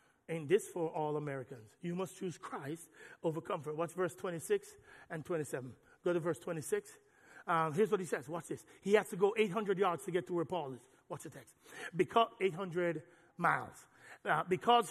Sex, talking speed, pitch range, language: male, 190 wpm, 170-250 Hz, English